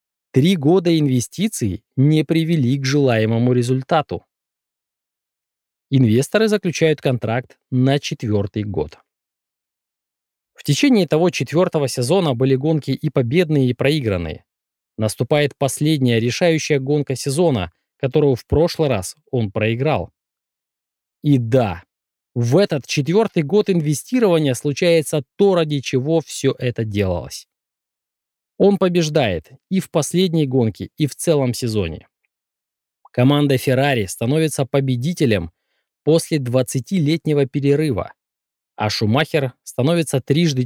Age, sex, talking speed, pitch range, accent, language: 20-39, male, 105 wpm, 120-160 Hz, native, Russian